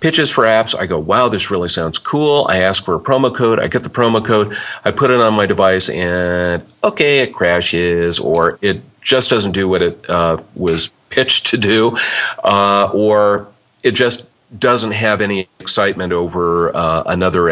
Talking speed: 185 wpm